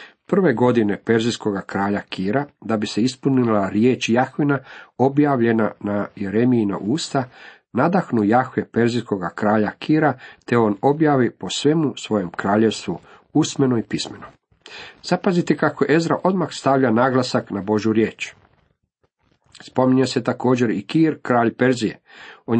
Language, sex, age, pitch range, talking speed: Croatian, male, 50-69, 105-135 Hz, 125 wpm